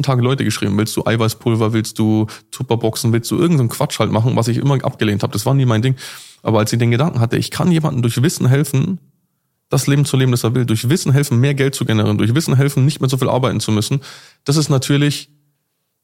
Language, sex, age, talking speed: German, male, 20-39, 240 wpm